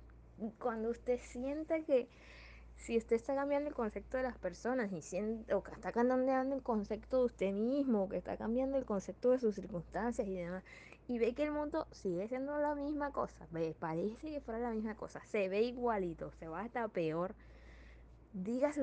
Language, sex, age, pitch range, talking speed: Spanish, female, 20-39, 170-240 Hz, 195 wpm